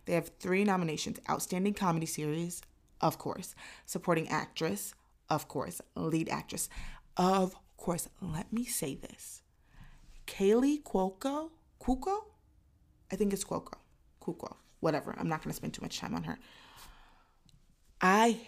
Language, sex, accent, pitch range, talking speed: English, female, American, 160-200 Hz, 135 wpm